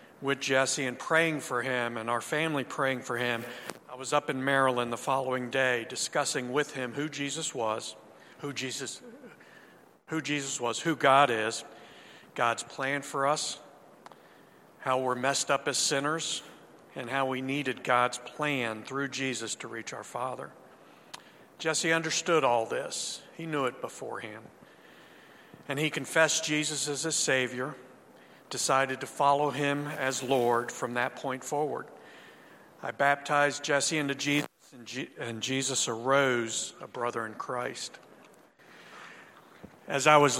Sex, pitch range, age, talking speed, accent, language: male, 125-150 Hz, 50-69, 145 wpm, American, English